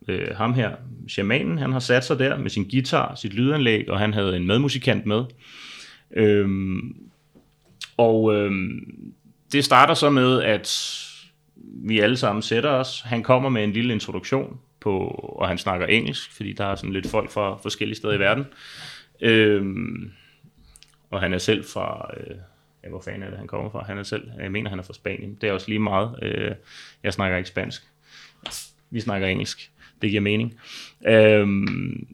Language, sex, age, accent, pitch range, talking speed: Danish, male, 30-49, native, 100-125 Hz, 165 wpm